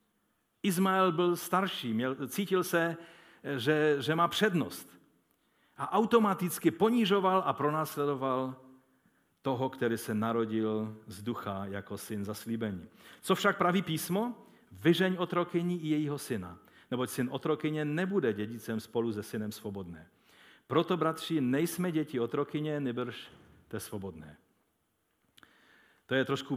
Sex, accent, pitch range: male, native, 110-170 Hz